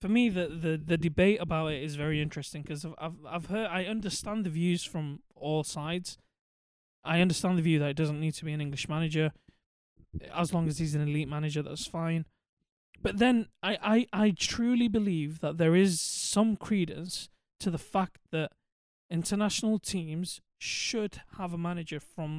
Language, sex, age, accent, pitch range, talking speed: English, male, 20-39, British, 160-190 Hz, 180 wpm